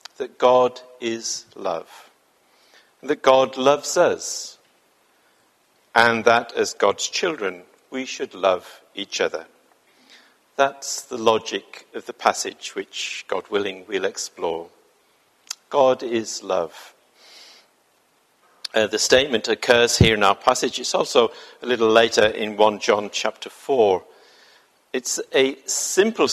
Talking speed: 120 wpm